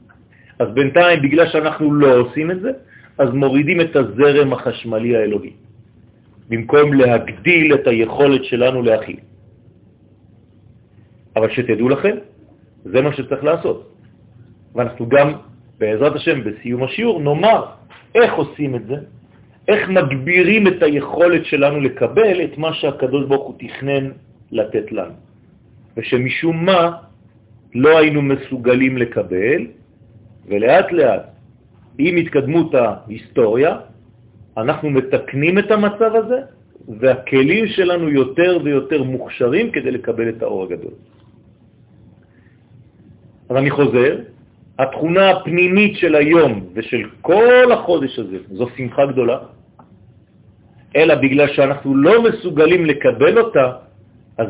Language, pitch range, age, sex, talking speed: French, 115-155 Hz, 40-59, male, 100 wpm